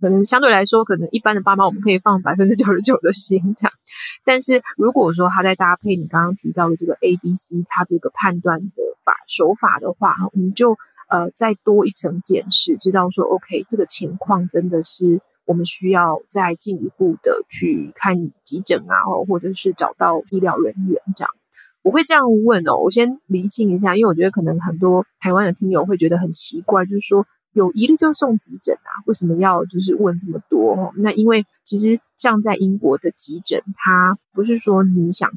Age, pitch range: 20-39, 180-220 Hz